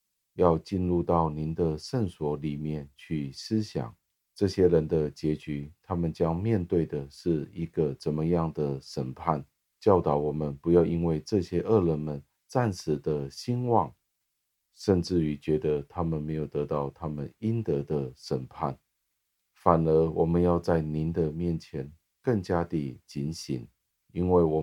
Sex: male